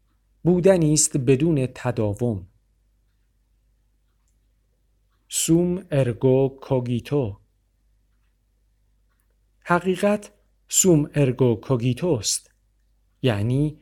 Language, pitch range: Persian, 110-150 Hz